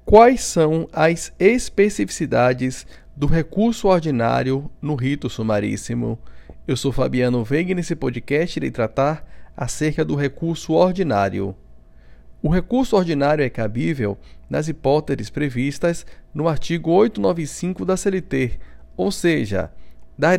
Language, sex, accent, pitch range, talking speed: Portuguese, male, Brazilian, 115-165 Hz, 115 wpm